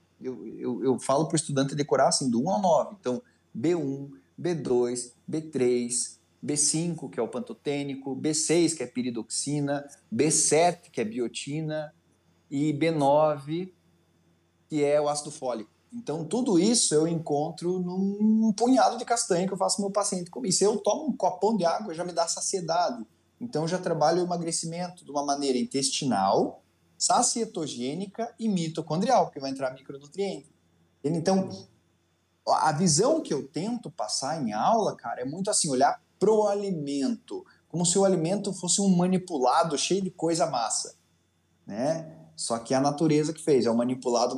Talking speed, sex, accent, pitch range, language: 165 wpm, male, Brazilian, 135-190 Hz, Portuguese